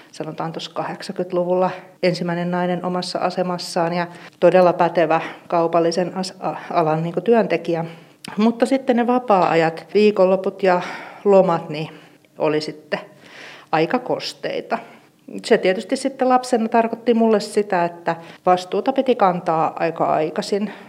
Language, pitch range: Finnish, 170-200 Hz